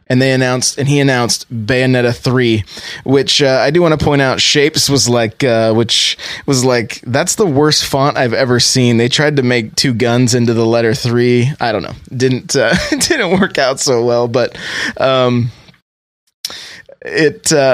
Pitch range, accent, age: 120-150 Hz, American, 20-39